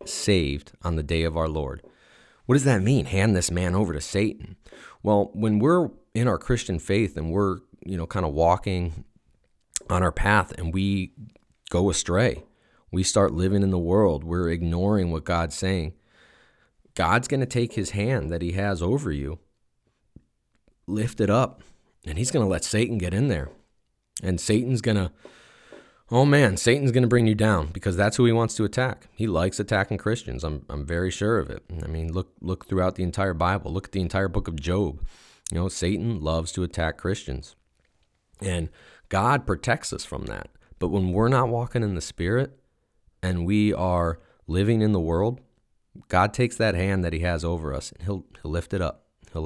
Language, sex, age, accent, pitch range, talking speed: English, male, 30-49, American, 85-110 Hz, 195 wpm